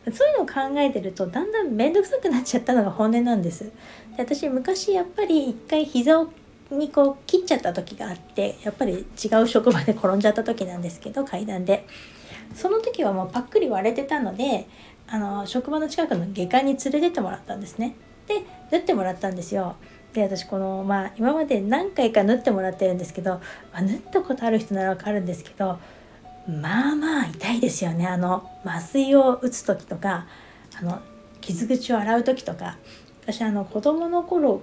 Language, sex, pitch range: Japanese, female, 190-280 Hz